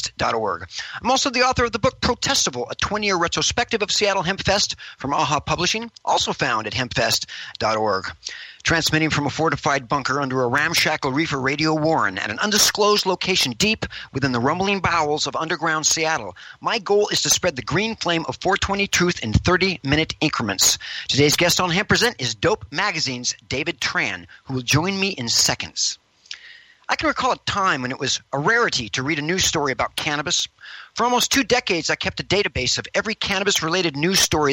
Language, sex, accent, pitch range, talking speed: English, male, American, 145-200 Hz, 185 wpm